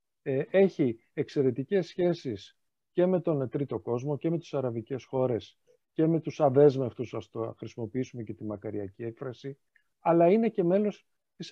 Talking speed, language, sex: 150 wpm, Greek, male